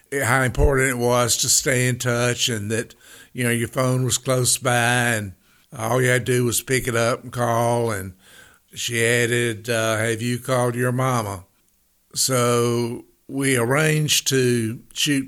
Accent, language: American, English